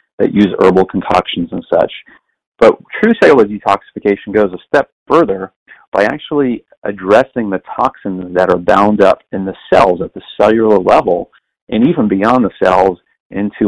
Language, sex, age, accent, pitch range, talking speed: English, male, 40-59, American, 95-110 Hz, 160 wpm